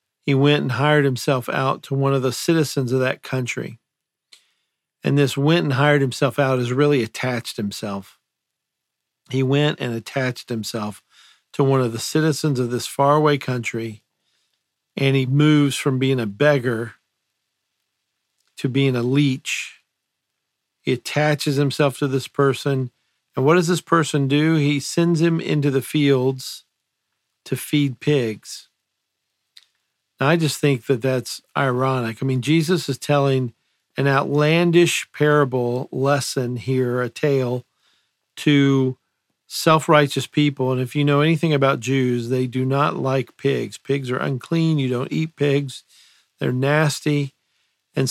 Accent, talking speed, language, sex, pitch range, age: American, 140 wpm, English, male, 130-150 Hz, 50-69